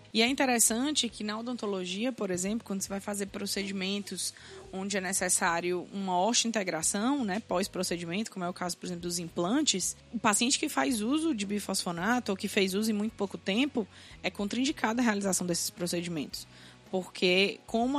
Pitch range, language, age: 195-235 Hz, Portuguese, 20-39